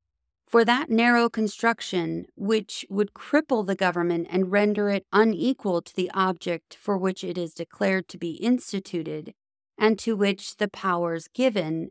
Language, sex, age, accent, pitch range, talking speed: English, female, 30-49, American, 175-220 Hz, 150 wpm